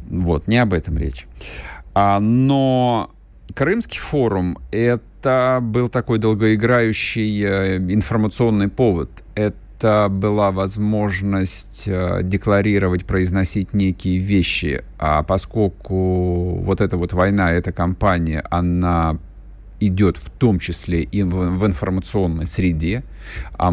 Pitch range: 85-105 Hz